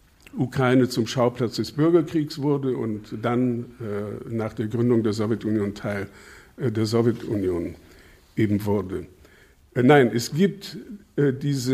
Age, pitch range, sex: 60-79, 115-145 Hz, male